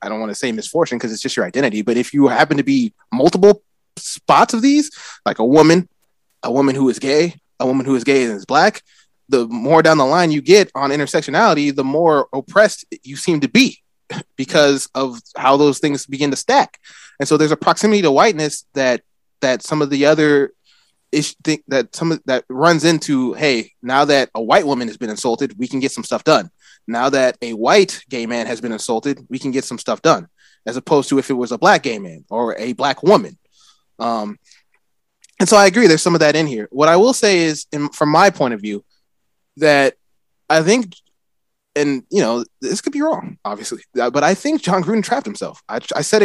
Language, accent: English, American